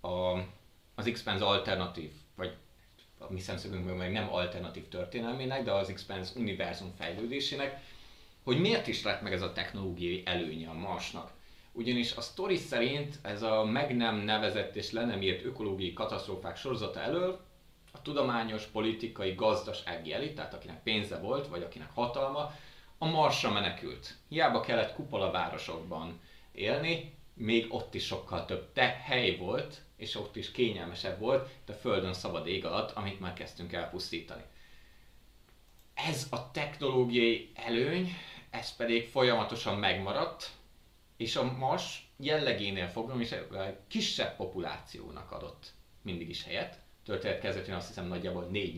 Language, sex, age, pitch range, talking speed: Hungarian, male, 30-49, 95-130 Hz, 140 wpm